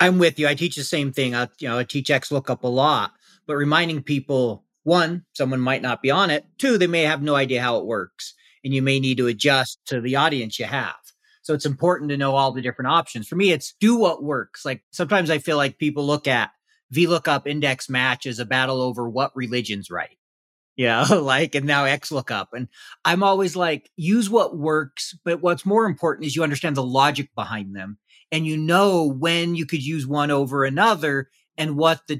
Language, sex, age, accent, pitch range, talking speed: English, male, 40-59, American, 130-170 Hz, 215 wpm